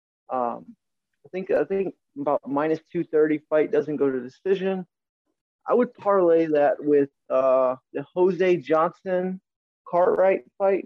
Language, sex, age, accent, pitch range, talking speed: English, male, 20-39, American, 145-185 Hz, 145 wpm